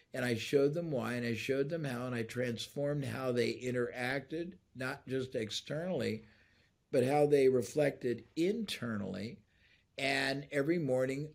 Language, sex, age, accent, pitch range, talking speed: English, male, 60-79, American, 115-150 Hz, 145 wpm